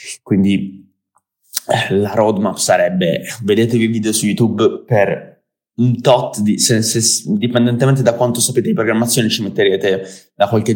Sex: male